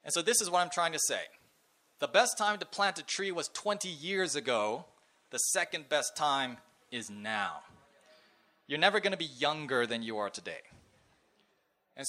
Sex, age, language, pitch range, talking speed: male, 30-49, English, 135-185 Hz, 185 wpm